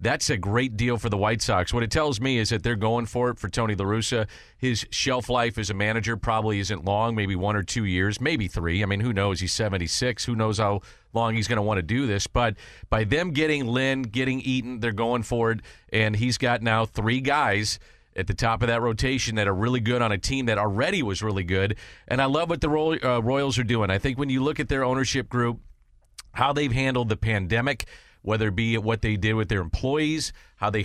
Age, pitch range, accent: 40-59, 105-130 Hz, American